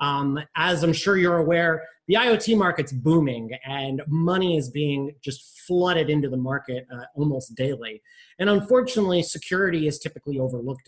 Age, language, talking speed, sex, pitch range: 30-49, English, 155 wpm, male, 135-180 Hz